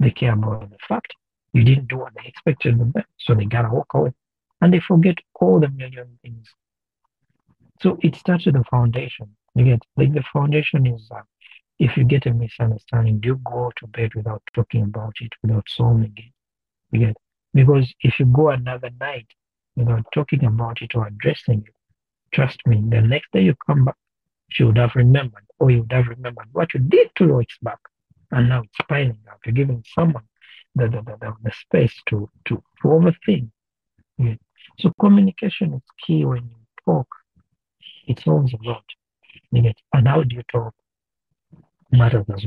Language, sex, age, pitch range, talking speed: English, male, 60-79, 115-150 Hz, 180 wpm